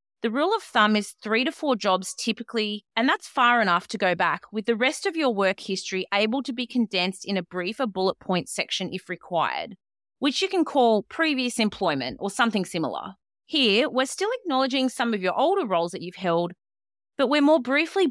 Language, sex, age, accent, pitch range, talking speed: English, female, 30-49, Australian, 185-260 Hz, 200 wpm